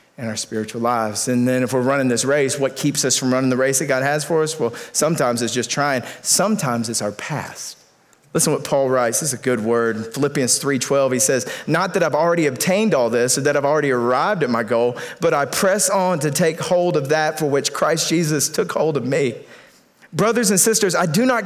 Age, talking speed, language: 40-59, 240 wpm, English